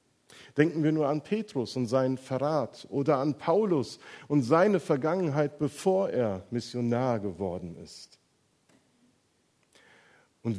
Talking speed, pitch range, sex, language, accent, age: 115 wpm, 125-155 Hz, male, German, German, 50-69